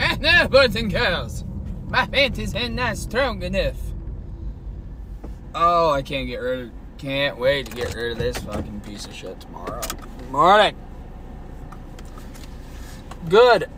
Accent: American